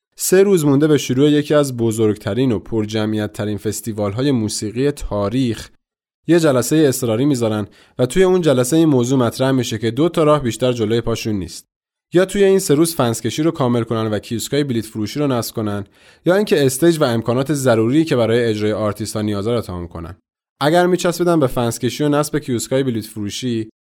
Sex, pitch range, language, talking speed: male, 110-150 Hz, Persian, 185 wpm